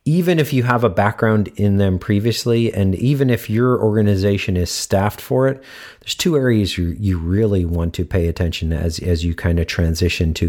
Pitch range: 95-125 Hz